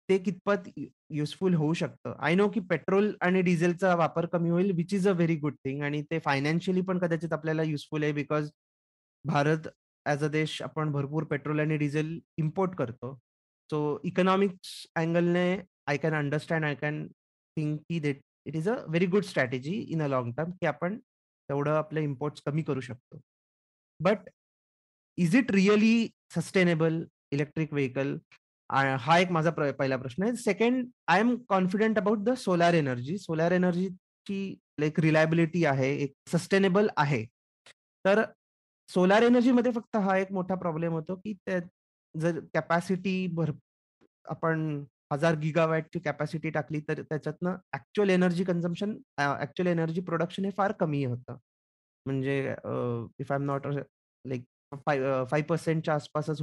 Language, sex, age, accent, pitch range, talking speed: Marathi, male, 30-49, native, 145-185 Hz, 145 wpm